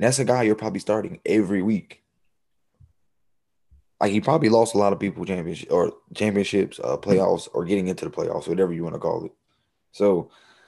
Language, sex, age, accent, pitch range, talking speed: English, male, 20-39, American, 90-115 Hz, 190 wpm